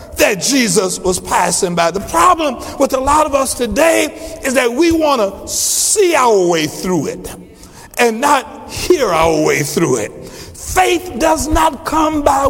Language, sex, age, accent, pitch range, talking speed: English, male, 60-79, American, 230-310 Hz, 170 wpm